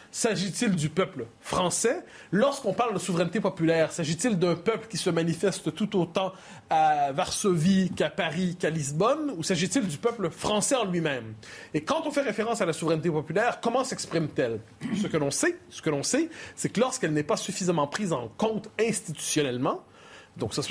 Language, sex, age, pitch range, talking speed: French, male, 30-49, 150-215 Hz, 175 wpm